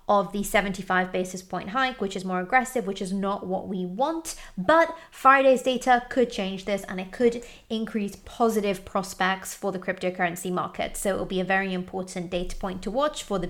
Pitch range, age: 190-255 Hz, 20-39